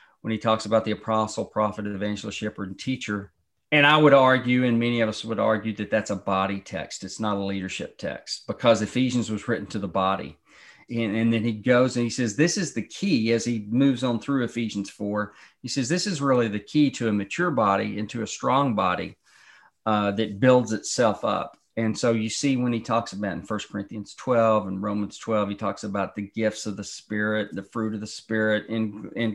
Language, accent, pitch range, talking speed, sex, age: English, American, 105-130 Hz, 220 wpm, male, 40-59